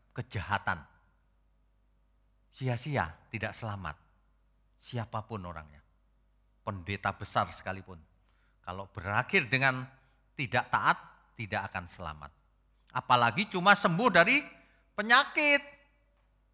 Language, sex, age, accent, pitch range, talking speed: Indonesian, male, 40-59, native, 95-140 Hz, 80 wpm